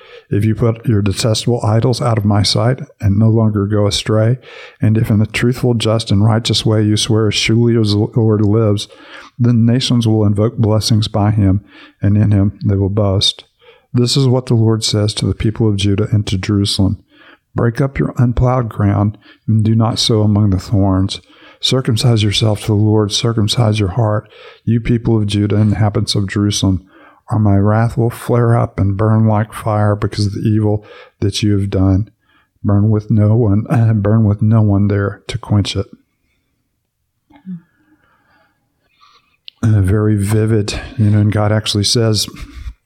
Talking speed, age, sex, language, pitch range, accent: 180 wpm, 50-69, male, English, 105-115 Hz, American